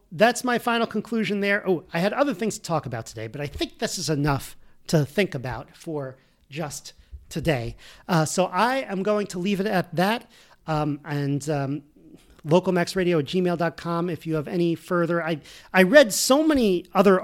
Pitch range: 145-195 Hz